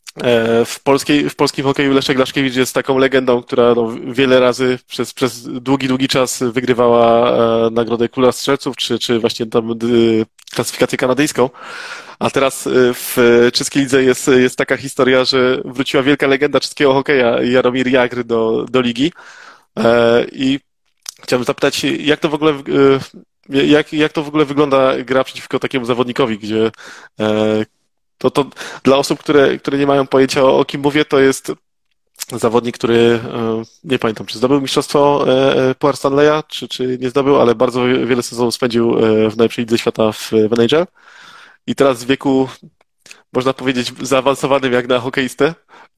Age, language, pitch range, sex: 20-39, Polish, 120-140 Hz, male